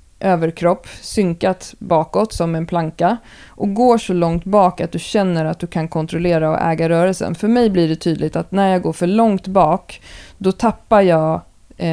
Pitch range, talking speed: 160-195 Hz, 180 wpm